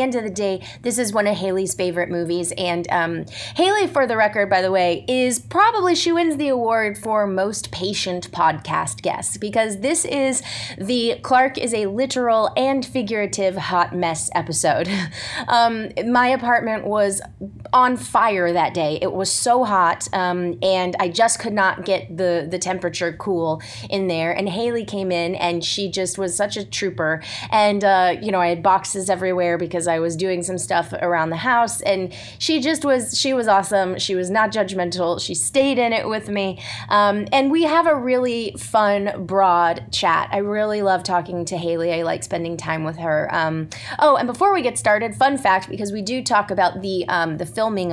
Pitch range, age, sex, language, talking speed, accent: 175-240 Hz, 20-39, female, English, 195 wpm, American